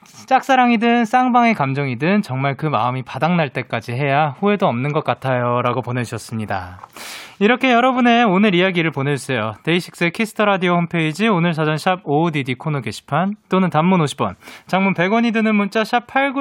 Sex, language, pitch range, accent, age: male, Korean, 135-220 Hz, native, 20-39